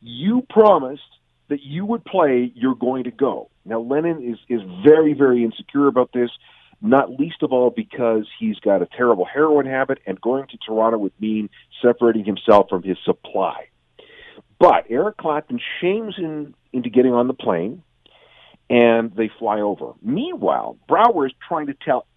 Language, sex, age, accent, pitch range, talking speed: English, male, 50-69, American, 115-160 Hz, 165 wpm